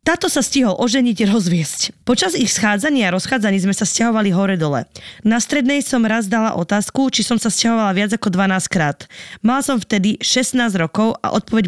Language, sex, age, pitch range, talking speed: Slovak, female, 20-39, 190-245 Hz, 180 wpm